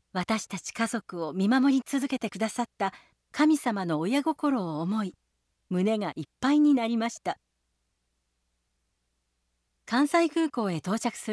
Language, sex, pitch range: Japanese, female, 160-260 Hz